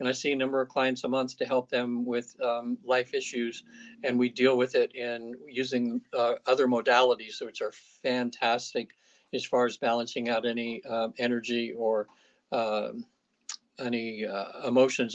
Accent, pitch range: American, 115-130 Hz